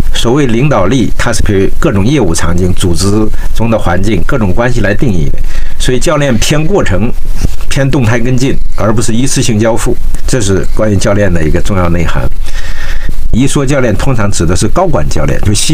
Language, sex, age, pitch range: Chinese, male, 60-79, 90-125 Hz